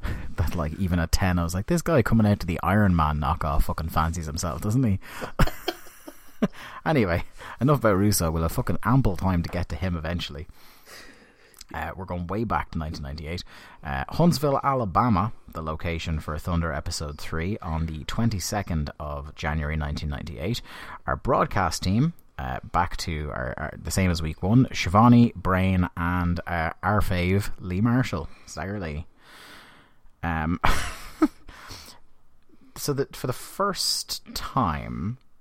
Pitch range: 80-105 Hz